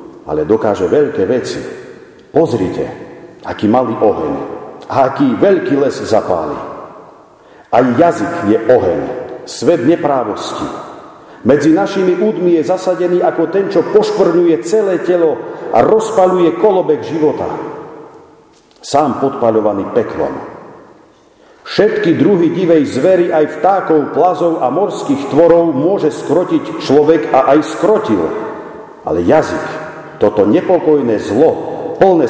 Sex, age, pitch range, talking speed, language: male, 50-69, 150-215 Hz, 110 wpm, Slovak